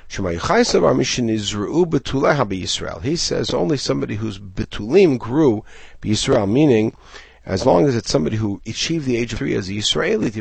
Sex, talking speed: male, 125 wpm